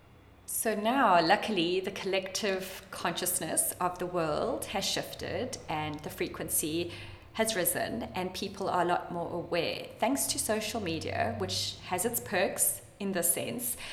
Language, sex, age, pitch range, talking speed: English, female, 20-39, 165-195 Hz, 145 wpm